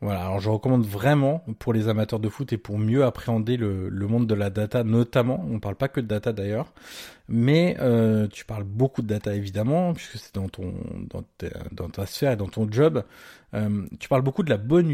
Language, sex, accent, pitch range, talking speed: French, male, French, 105-130 Hz, 225 wpm